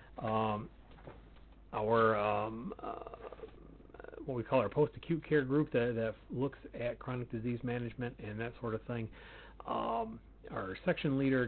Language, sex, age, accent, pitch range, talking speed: English, male, 40-59, American, 110-140 Hz, 145 wpm